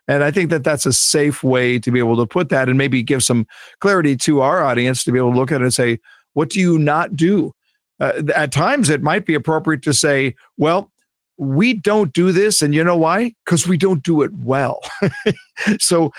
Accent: American